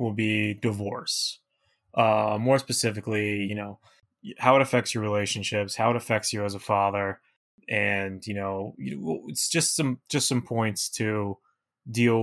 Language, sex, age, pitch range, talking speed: English, male, 20-39, 105-125 Hz, 150 wpm